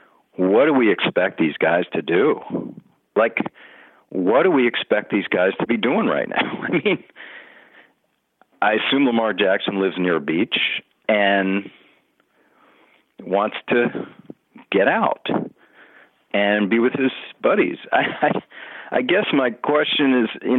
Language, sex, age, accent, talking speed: English, male, 50-69, American, 140 wpm